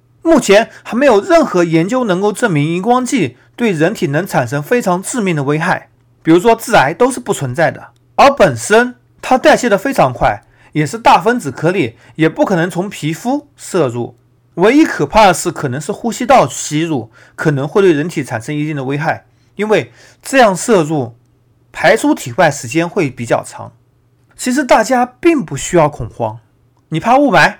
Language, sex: Chinese, male